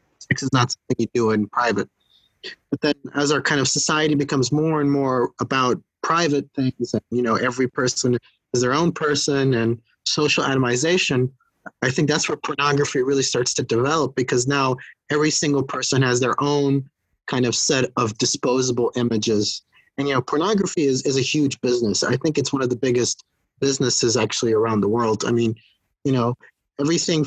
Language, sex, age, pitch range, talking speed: English, male, 30-49, 120-140 Hz, 185 wpm